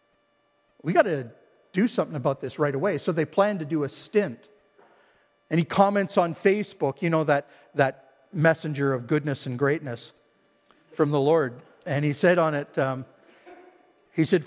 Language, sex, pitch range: English, male, 145-180 Hz